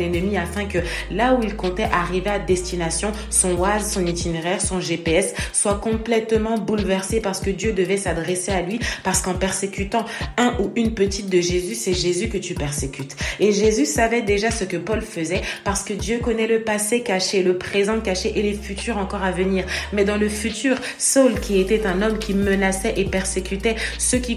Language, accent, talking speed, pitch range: French, French, 195 wpm, 185-225 Hz